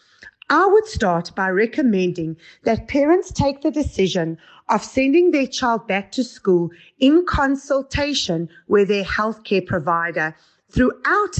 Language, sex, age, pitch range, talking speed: English, female, 30-49, 180-270 Hz, 125 wpm